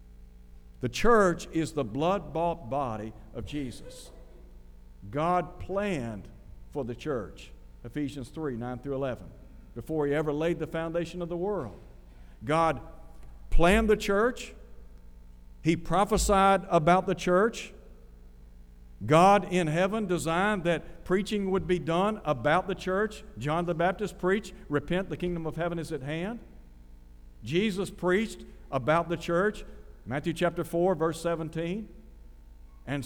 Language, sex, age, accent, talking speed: English, male, 60-79, American, 130 wpm